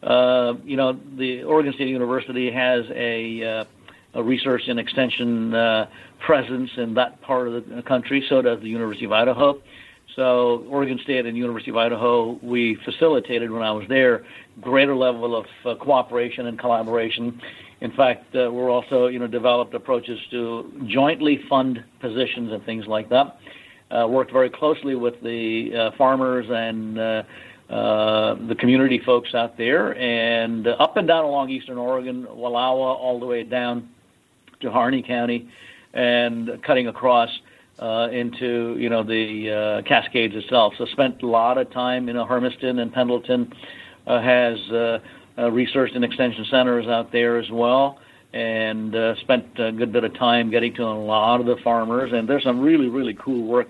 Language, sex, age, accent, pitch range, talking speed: English, male, 60-79, American, 115-125 Hz, 170 wpm